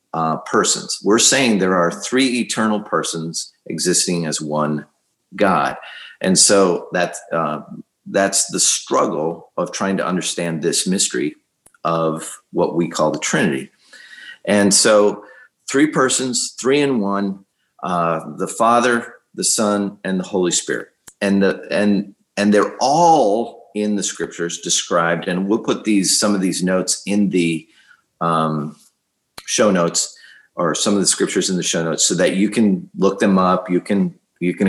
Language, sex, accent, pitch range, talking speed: English, male, American, 90-105 Hz, 155 wpm